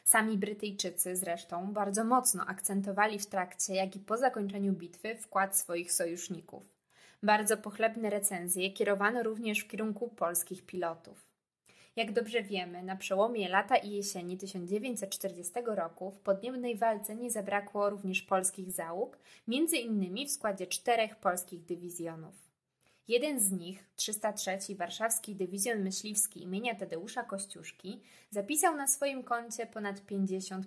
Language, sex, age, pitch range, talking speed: Polish, female, 20-39, 190-225 Hz, 130 wpm